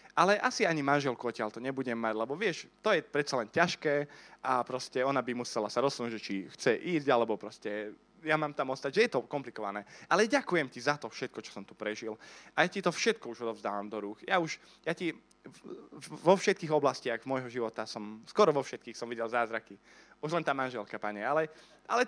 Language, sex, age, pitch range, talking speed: Slovak, male, 20-39, 115-160 Hz, 210 wpm